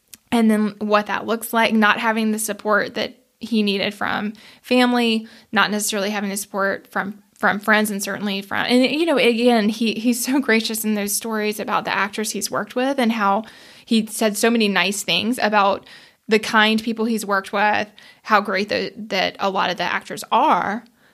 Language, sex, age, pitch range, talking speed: English, female, 20-39, 205-230 Hz, 195 wpm